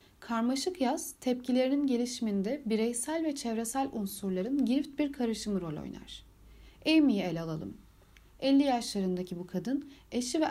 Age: 40-59